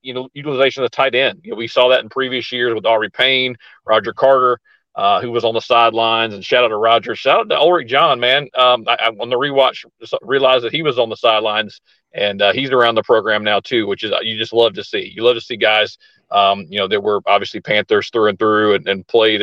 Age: 40-59